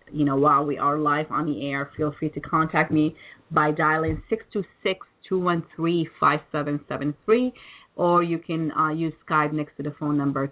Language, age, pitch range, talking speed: English, 30-49, 150-190 Hz, 210 wpm